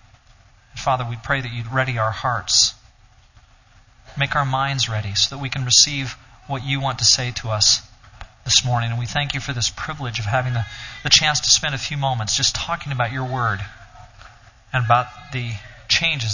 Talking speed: 190 wpm